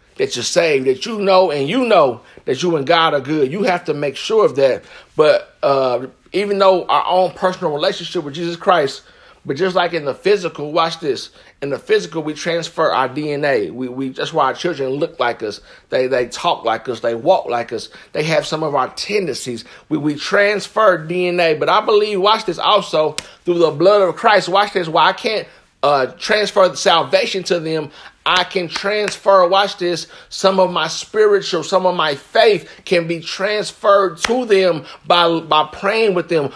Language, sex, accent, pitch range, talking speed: English, male, American, 170-210 Hz, 200 wpm